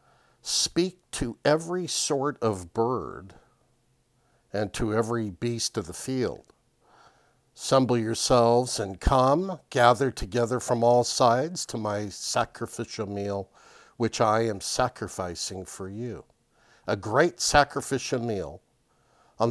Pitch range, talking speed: 110-125 Hz, 115 wpm